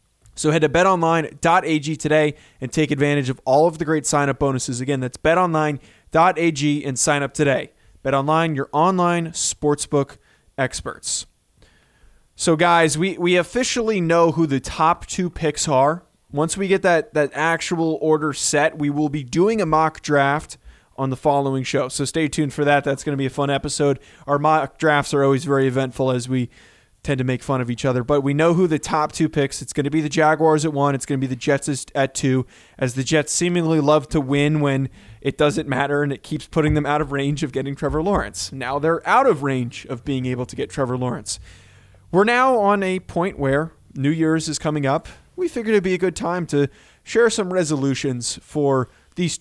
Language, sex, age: English, male, 20-39